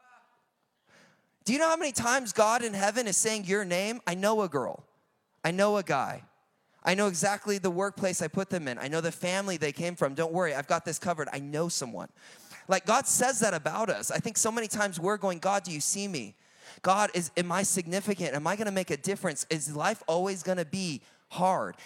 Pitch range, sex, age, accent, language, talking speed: 175-235 Hz, male, 20-39, American, English, 230 wpm